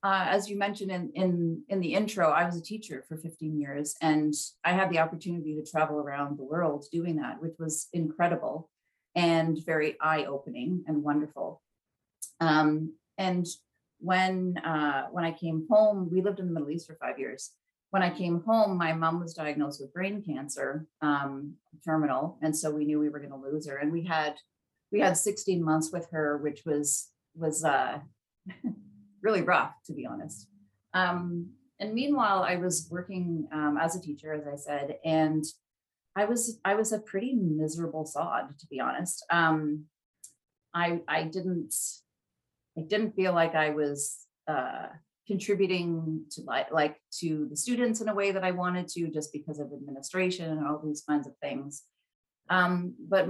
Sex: female